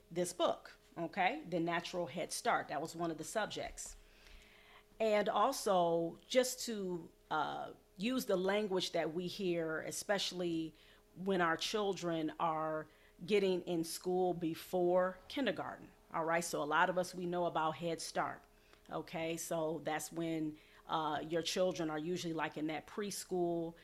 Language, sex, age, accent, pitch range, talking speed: English, female, 40-59, American, 160-195 Hz, 150 wpm